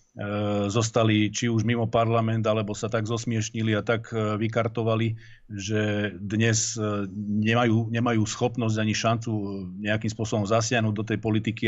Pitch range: 105-115 Hz